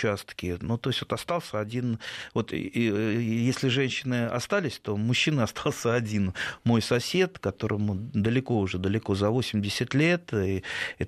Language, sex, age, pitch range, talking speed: Russian, male, 30-49, 100-135 Hz, 150 wpm